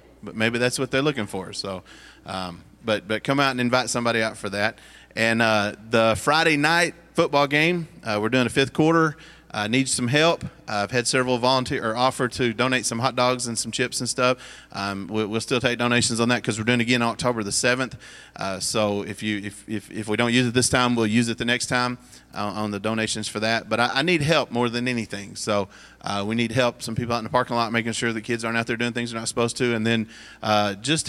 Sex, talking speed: male, 255 wpm